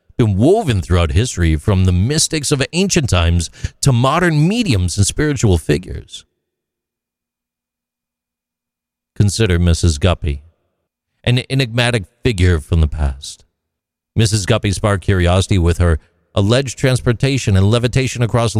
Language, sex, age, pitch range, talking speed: English, male, 50-69, 85-120 Hz, 115 wpm